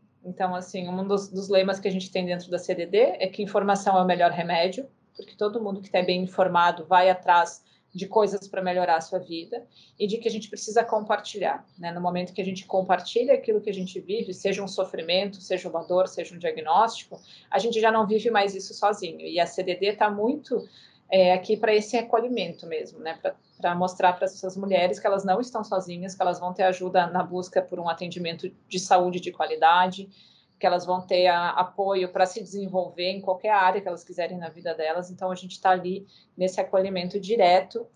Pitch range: 180-210 Hz